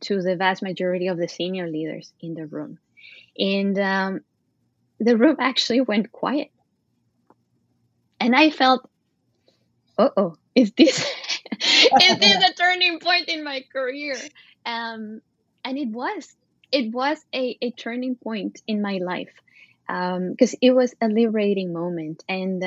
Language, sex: English, female